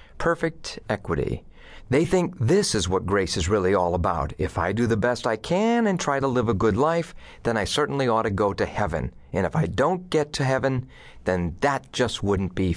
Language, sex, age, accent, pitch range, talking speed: English, male, 40-59, American, 95-145 Hz, 215 wpm